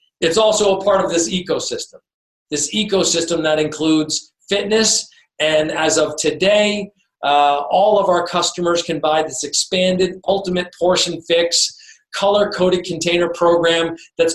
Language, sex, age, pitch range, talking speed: English, male, 40-59, 155-195 Hz, 135 wpm